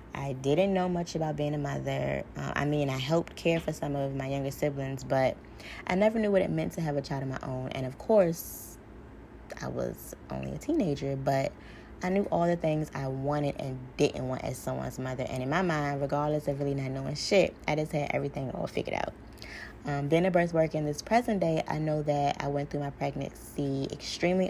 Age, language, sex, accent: 20-39, English, female, American